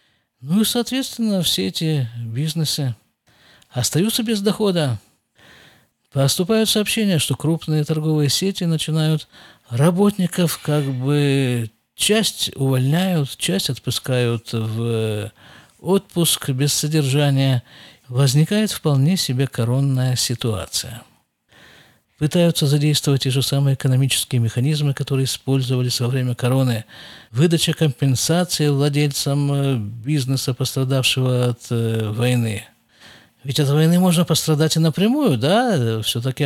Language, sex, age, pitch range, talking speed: Russian, male, 50-69, 120-160 Hz, 100 wpm